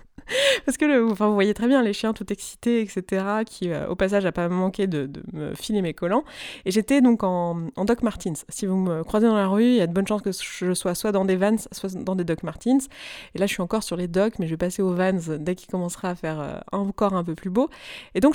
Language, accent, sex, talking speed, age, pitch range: French, French, female, 275 wpm, 20-39, 180-235 Hz